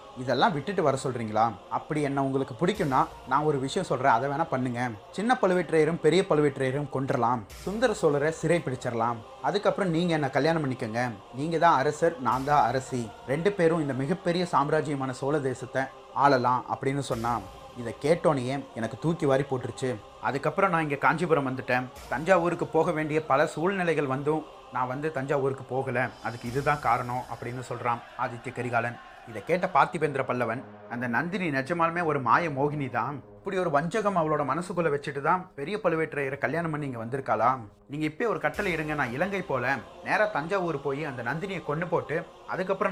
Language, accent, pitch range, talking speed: Tamil, native, 130-165 Hz, 140 wpm